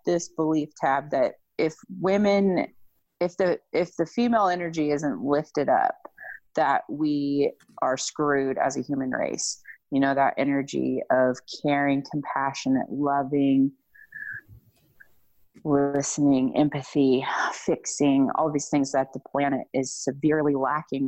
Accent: American